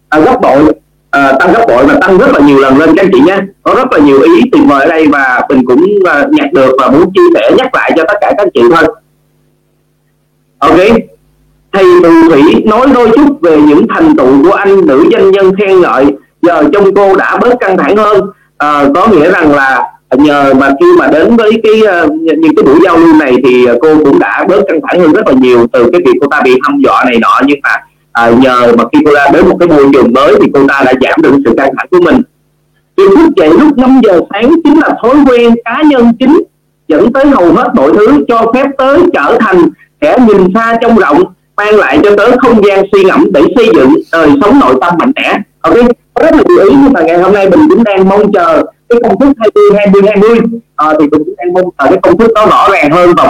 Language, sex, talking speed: Vietnamese, male, 240 wpm